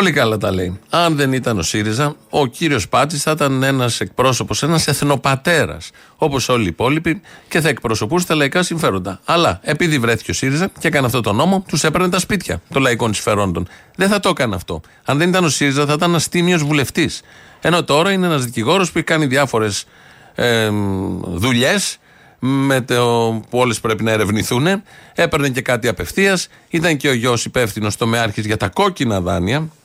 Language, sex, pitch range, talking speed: Greek, male, 115-165 Hz, 175 wpm